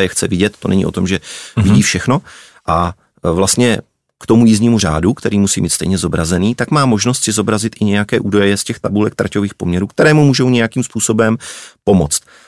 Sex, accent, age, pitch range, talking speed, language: male, native, 30-49, 100-115 Hz, 190 wpm, Czech